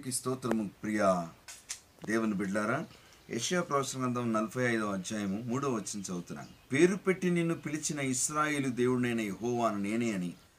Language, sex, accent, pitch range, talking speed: Telugu, male, native, 95-140 Hz, 125 wpm